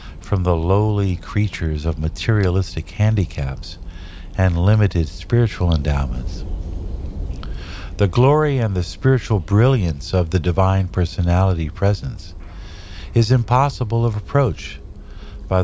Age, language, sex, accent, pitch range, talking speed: 50-69, English, male, American, 85-105 Hz, 105 wpm